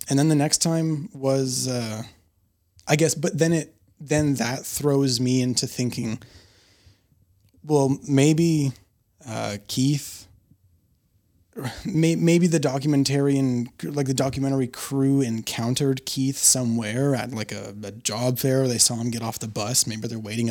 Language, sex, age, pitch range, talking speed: English, male, 20-39, 110-140 Hz, 140 wpm